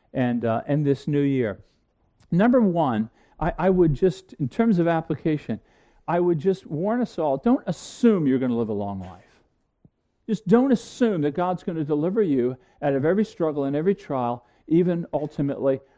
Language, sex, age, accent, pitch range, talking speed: English, male, 50-69, American, 145-205 Hz, 180 wpm